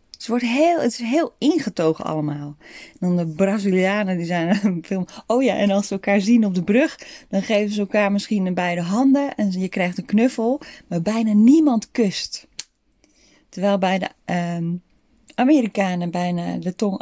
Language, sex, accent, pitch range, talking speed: Dutch, female, Dutch, 175-240 Hz, 160 wpm